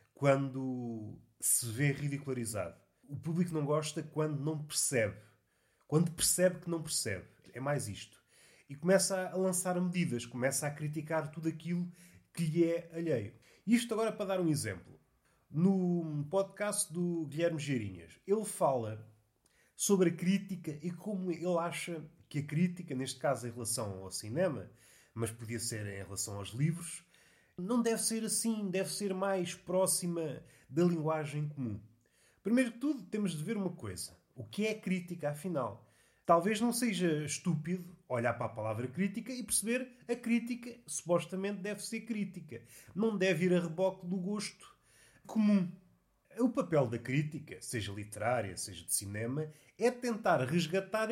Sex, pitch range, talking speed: male, 135-195 Hz, 155 wpm